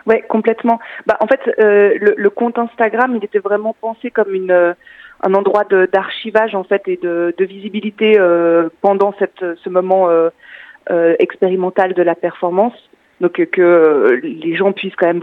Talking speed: 180 wpm